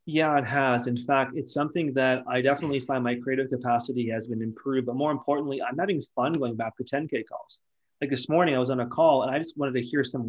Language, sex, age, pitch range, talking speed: English, male, 30-49, 125-145 Hz, 250 wpm